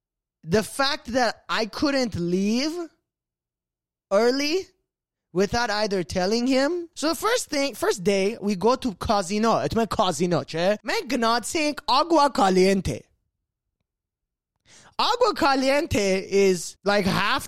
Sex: male